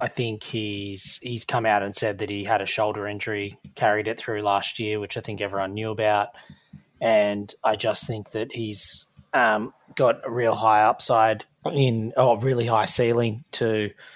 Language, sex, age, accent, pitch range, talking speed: English, male, 20-39, Australian, 105-120 Hz, 185 wpm